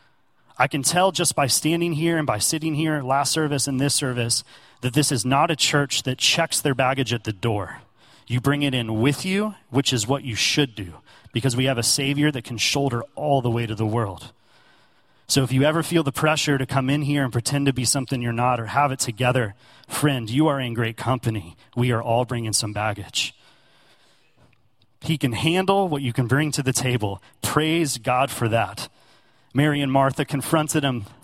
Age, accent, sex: 30-49, American, male